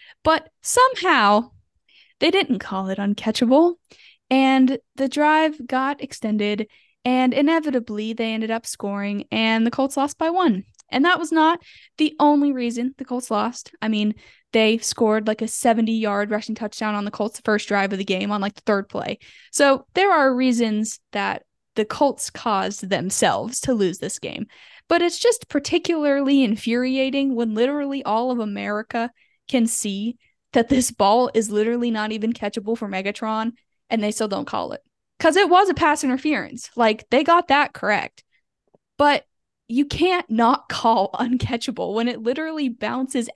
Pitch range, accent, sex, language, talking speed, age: 220-305 Hz, American, female, English, 165 wpm, 10-29